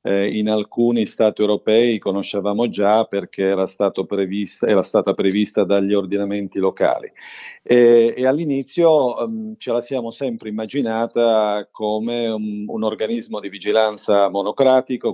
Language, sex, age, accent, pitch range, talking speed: Italian, male, 40-59, native, 105-120 Hz, 130 wpm